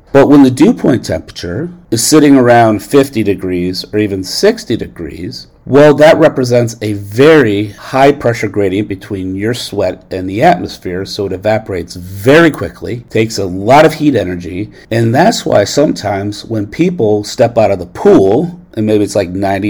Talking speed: 170 wpm